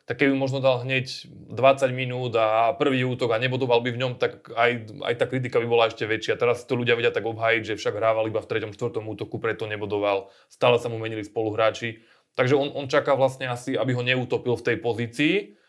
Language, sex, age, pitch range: Slovak, male, 20-39, 120-135 Hz